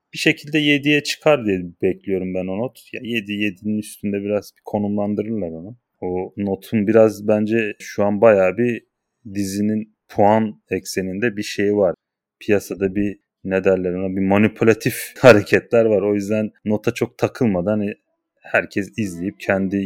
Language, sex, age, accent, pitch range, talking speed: Turkish, male, 30-49, native, 95-115 Hz, 145 wpm